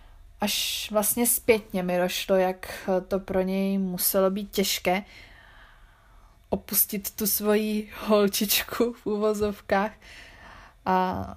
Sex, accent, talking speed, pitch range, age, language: female, native, 100 wpm, 185-210 Hz, 20-39, Czech